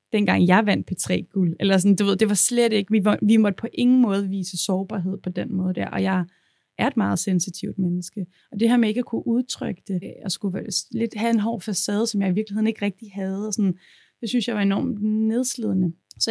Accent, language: native, Danish